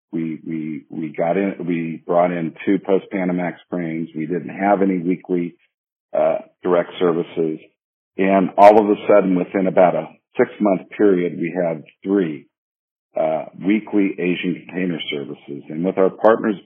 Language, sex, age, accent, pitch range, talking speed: English, male, 50-69, American, 85-100 Hz, 155 wpm